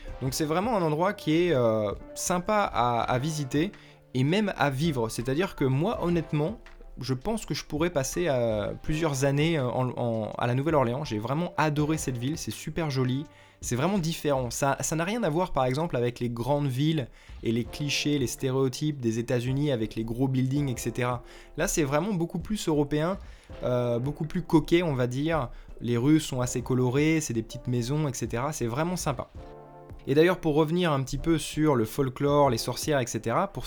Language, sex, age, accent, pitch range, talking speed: French, male, 20-39, French, 115-155 Hz, 195 wpm